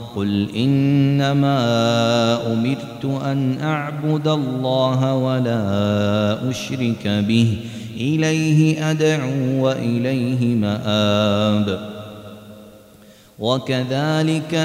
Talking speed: 55 wpm